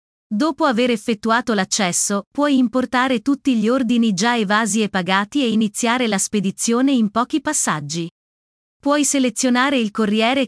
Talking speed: 140 wpm